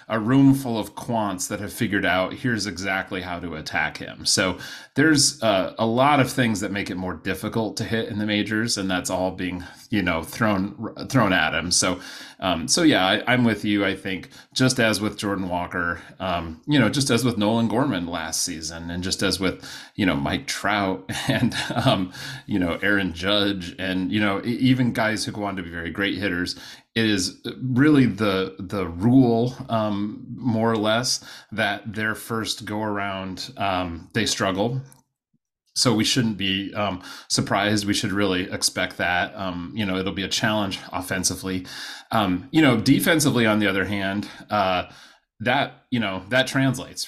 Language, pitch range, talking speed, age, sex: English, 95-120 Hz, 185 wpm, 30-49, male